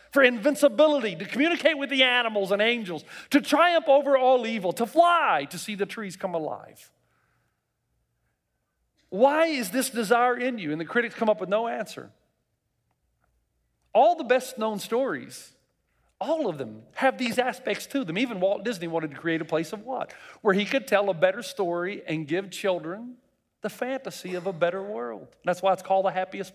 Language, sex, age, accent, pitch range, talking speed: English, male, 40-59, American, 150-230 Hz, 185 wpm